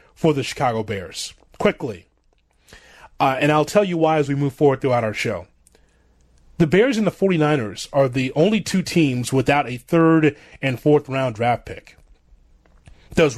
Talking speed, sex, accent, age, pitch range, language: 165 wpm, male, American, 30-49, 130-165 Hz, English